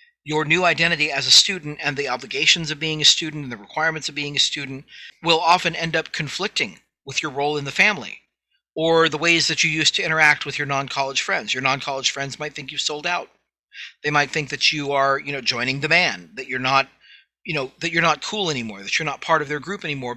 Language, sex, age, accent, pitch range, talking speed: English, male, 40-59, American, 140-170 Hz, 245 wpm